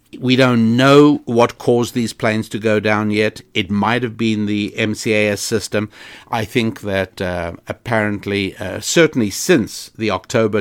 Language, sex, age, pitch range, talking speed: English, male, 60-79, 100-120 Hz, 160 wpm